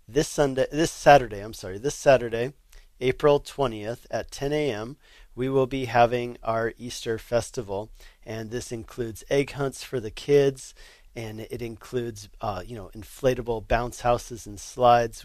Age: 40-59